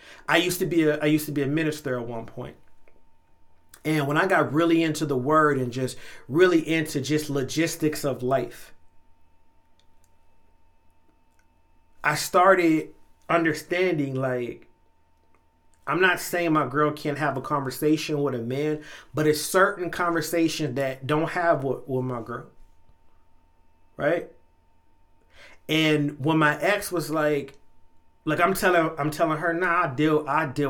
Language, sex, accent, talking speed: English, male, American, 145 wpm